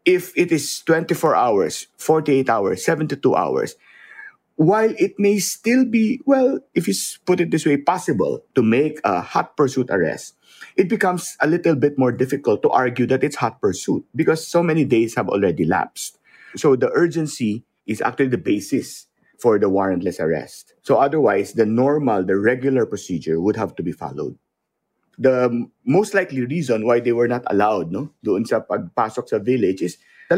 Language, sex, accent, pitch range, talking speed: English, male, Filipino, 125-205 Hz, 175 wpm